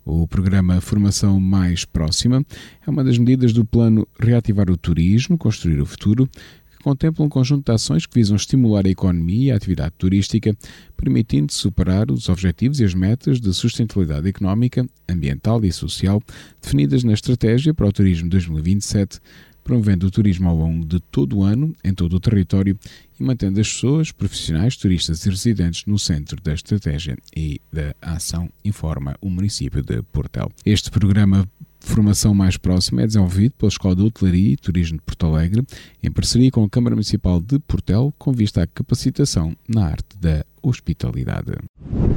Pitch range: 90-120 Hz